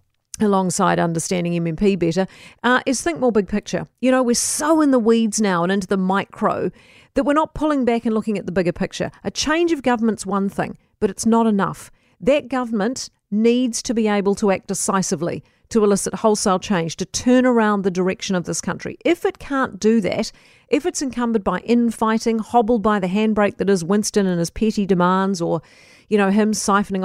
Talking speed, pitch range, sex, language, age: 200 wpm, 190-250 Hz, female, English, 40-59